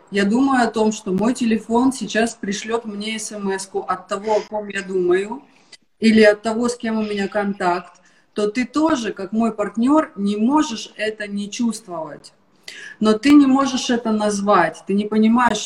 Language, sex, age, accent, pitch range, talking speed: Russian, female, 30-49, native, 195-240 Hz, 175 wpm